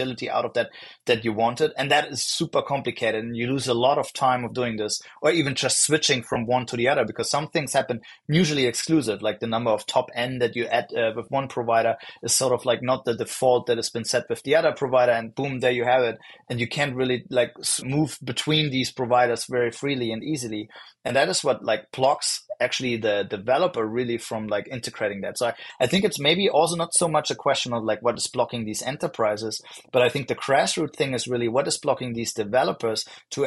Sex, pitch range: male, 115-135 Hz